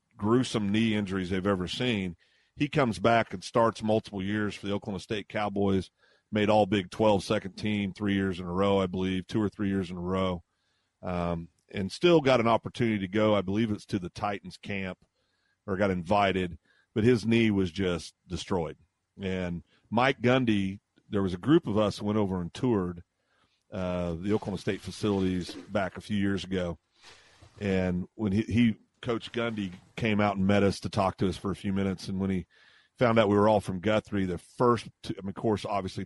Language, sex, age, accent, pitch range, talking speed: English, male, 40-59, American, 95-110 Hz, 205 wpm